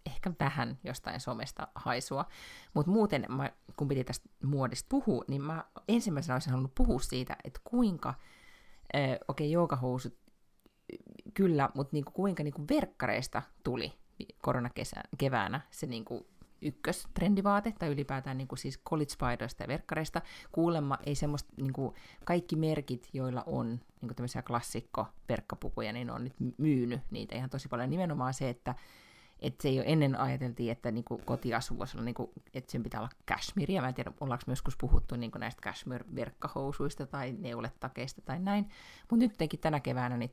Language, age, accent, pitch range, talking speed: Finnish, 30-49, native, 120-155 Hz, 155 wpm